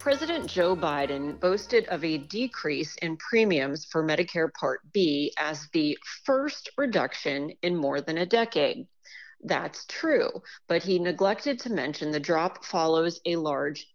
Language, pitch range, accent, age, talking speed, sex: English, 165-235 Hz, American, 40-59, 145 wpm, female